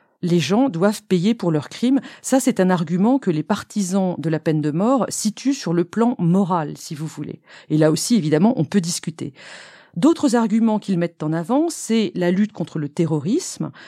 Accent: French